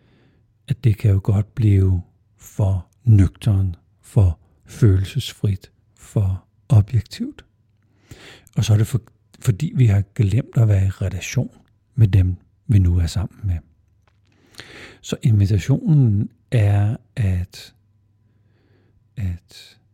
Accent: native